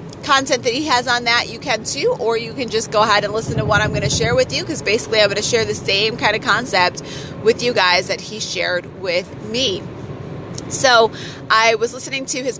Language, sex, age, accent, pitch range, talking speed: English, female, 30-49, American, 200-250 Hz, 240 wpm